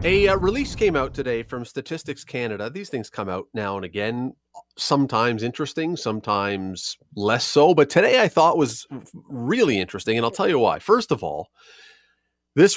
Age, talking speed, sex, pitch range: 30-49, 175 wpm, male, 105-160 Hz